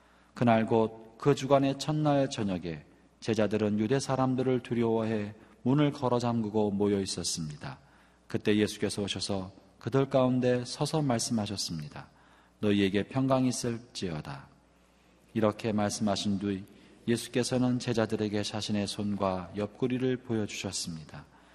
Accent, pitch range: native, 95-115 Hz